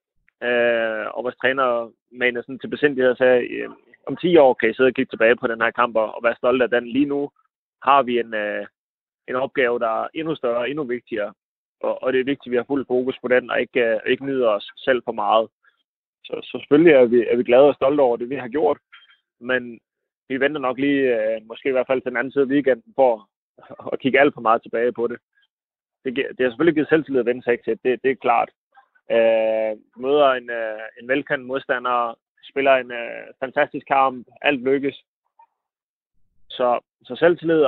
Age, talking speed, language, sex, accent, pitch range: 20-39, 210 wpm, Danish, male, native, 120-145 Hz